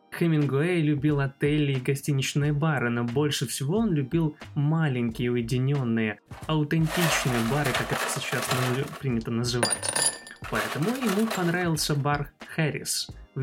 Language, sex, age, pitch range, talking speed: Russian, male, 20-39, 135-165 Hz, 115 wpm